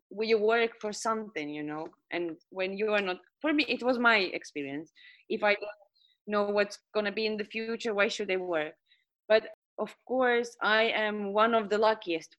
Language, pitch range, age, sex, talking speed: English, 180-225 Hz, 20-39, female, 200 wpm